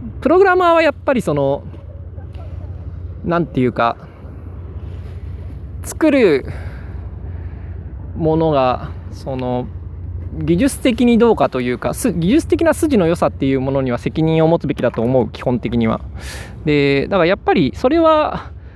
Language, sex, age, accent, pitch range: Japanese, male, 20-39, native, 100-165 Hz